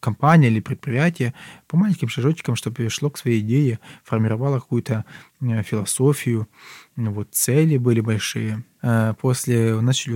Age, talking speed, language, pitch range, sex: 20-39, 120 wpm, Russian, 115-145 Hz, male